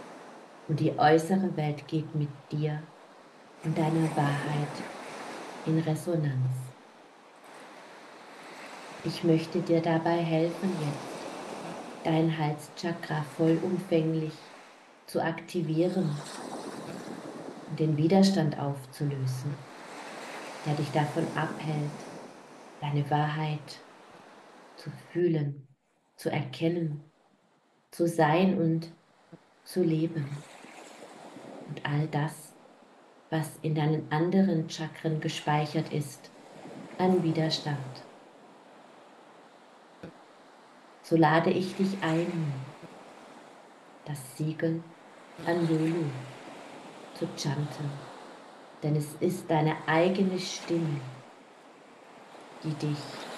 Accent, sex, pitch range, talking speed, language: German, female, 150-165 Hz, 85 wpm, German